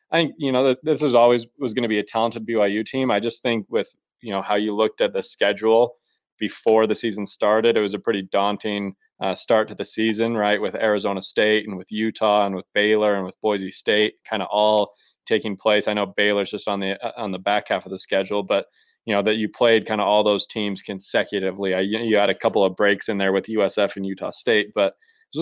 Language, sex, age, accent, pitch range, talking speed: English, male, 20-39, American, 100-115 Hz, 245 wpm